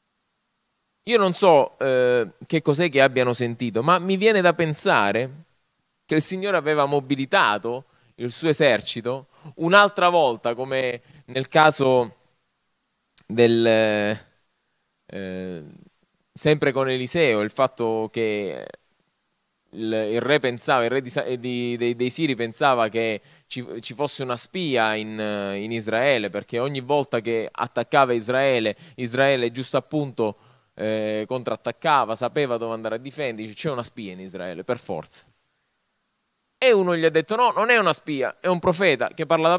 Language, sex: Italian, male